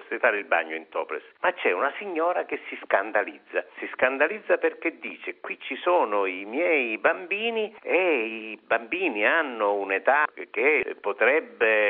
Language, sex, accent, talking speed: Italian, male, native, 140 wpm